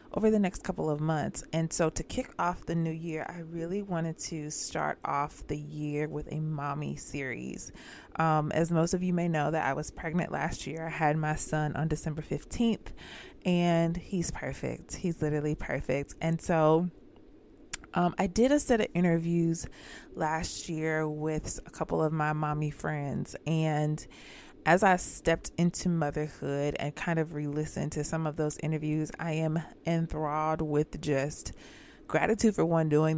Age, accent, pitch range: 20-39, American, 150-180 Hz